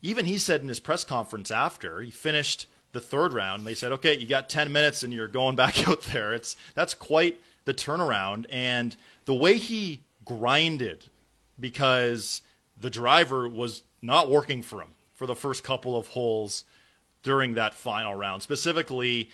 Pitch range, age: 115-145 Hz, 30-49